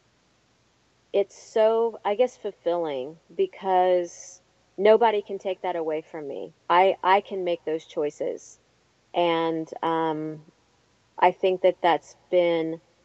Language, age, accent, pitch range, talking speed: English, 40-59, American, 160-185 Hz, 120 wpm